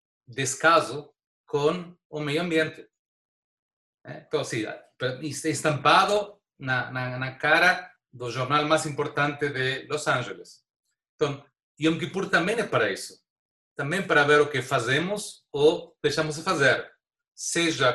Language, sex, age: Portuguese, male, 30-49